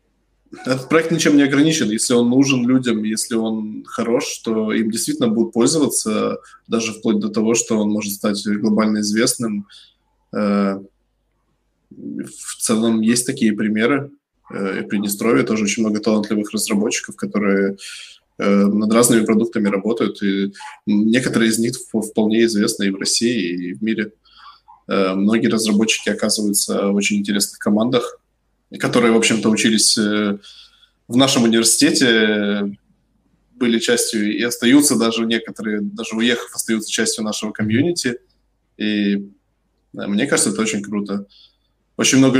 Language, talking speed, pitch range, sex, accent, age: Russian, 130 wpm, 105-115 Hz, male, native, 20-39